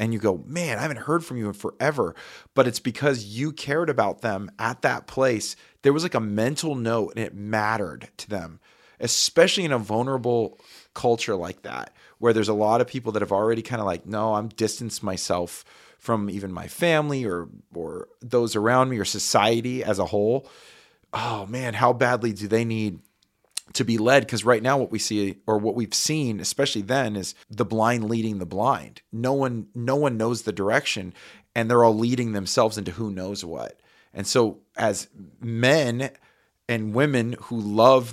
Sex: male